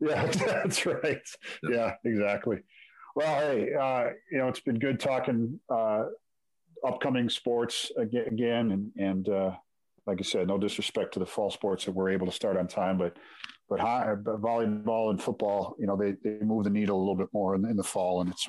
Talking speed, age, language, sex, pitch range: 200 wpm, 40-59, English, male, 100-120 Hz